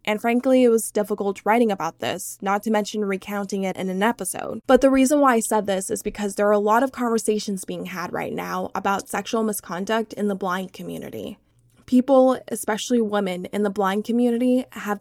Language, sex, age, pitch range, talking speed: English, female, 10-29, 195-225 Hz, 200 wpm